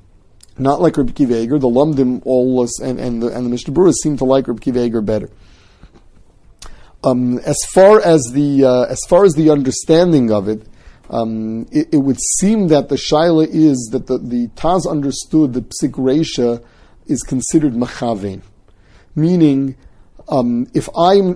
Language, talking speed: English, 145 wpm